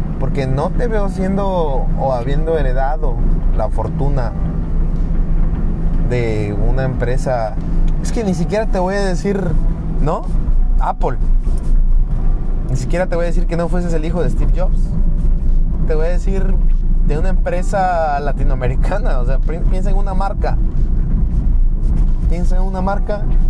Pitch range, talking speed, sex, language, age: 110-170 Hz, 140 wpm, male, Spanish, 20-39